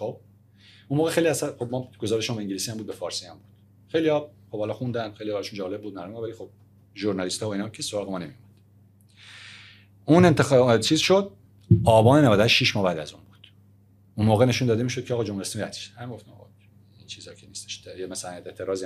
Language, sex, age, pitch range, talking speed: Persian, male, 40-59, 100-130 Hz, 195 wpm